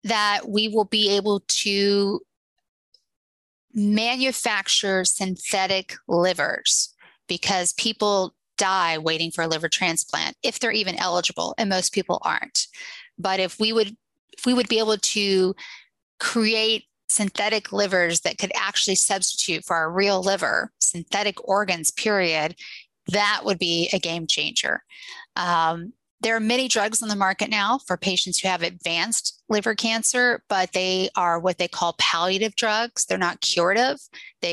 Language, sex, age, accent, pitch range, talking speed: English, female, 30-49, American, 175-215 Hz, 145 wpm